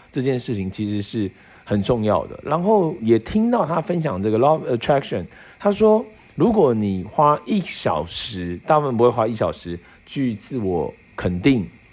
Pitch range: 100-155 Hz